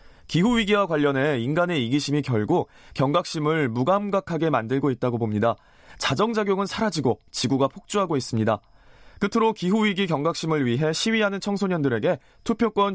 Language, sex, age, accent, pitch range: Korean, male, 20-39, native, 130-195 Hz